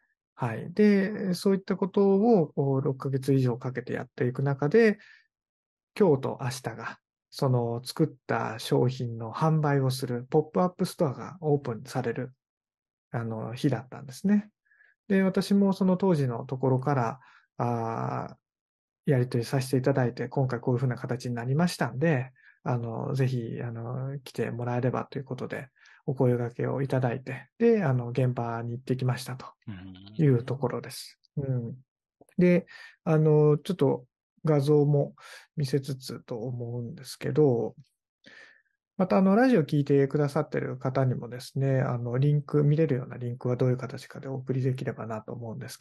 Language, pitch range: Japanese, 125-165 Hz